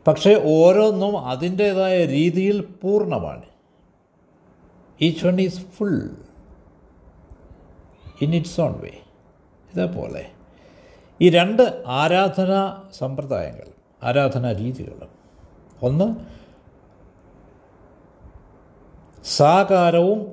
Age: 60-79